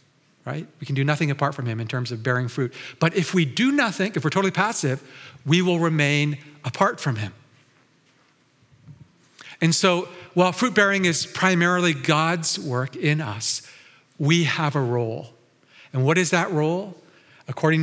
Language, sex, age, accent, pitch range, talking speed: English, male, 50-69, American, 135-165 Hz, 165 wpm